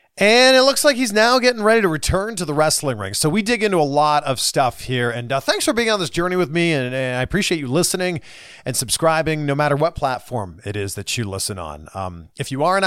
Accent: American